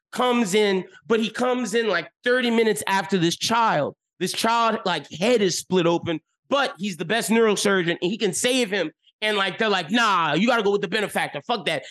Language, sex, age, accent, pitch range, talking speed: English, male, 30-49, American, 190-245 Hz, 210 wpm